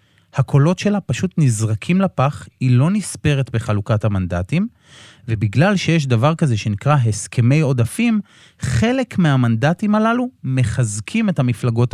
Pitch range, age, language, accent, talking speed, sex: 110-150 Hz, 30-49, Hebrew, native, 115 wpm, male